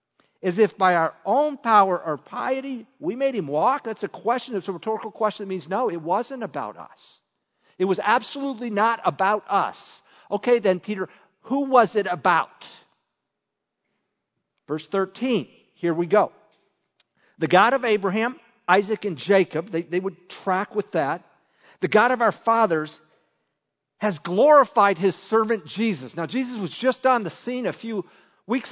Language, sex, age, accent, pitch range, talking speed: English, male, 50-69, American, 185-240 Hz, 160 wpm